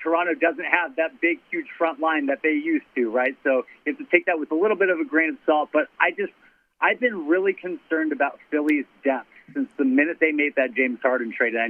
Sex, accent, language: male, American, English